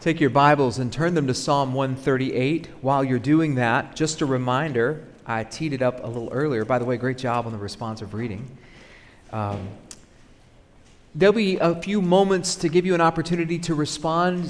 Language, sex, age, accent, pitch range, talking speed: English, male, 40-59, American, 120-155 Hz, 185 wpm